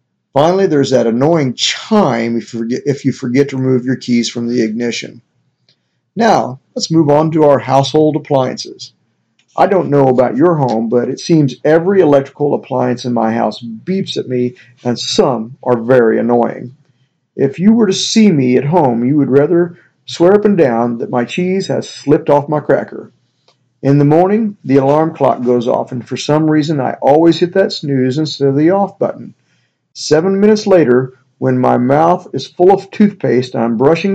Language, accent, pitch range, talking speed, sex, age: English, American, 125-170 Hz, 185 wpm, male, 50-69